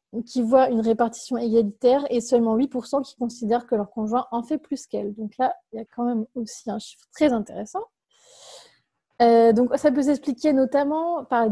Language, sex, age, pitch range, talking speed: French, female, 20-39, 225-265 Hz, 195 wpm